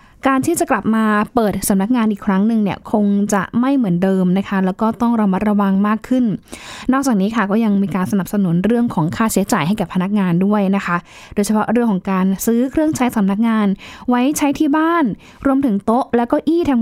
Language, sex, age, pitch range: Thai, female, 10-29, 200-255 Hz